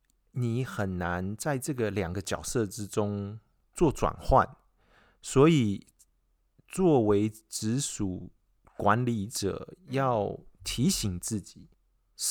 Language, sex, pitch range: Chinese, male, 100-140 Hz